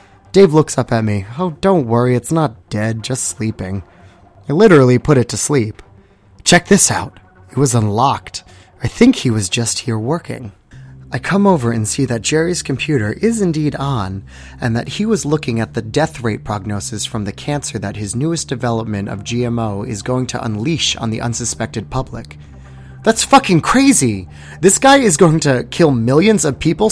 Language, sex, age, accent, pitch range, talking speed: English, male, 30-49, American, 110-155 Hz, 185 wpm